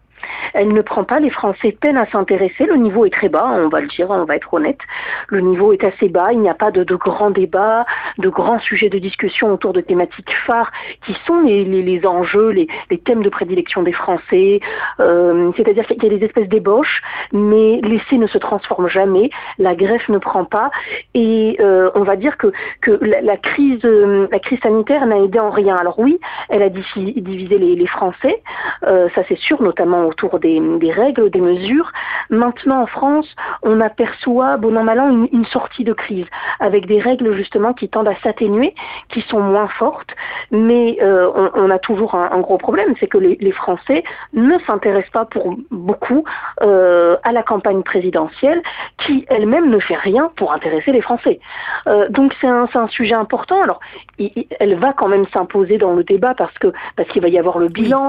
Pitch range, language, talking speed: 190-255 Hz, French, 210 wpm